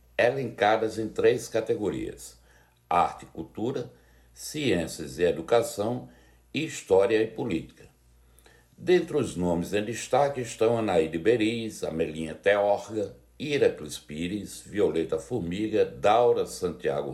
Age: 60-79